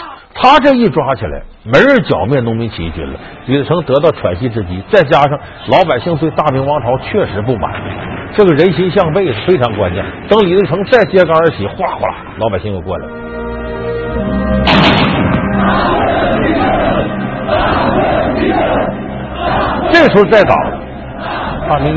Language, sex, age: Chinese, male, 50-69